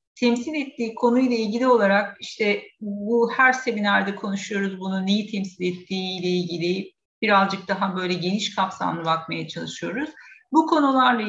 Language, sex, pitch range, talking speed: Turkish, female, 200-245 Hz, 135 wpm